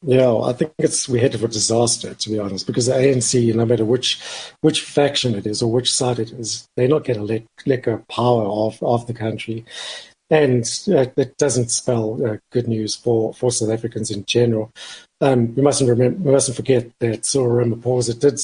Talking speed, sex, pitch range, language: 205 wpm, male, 115-135 Hz, English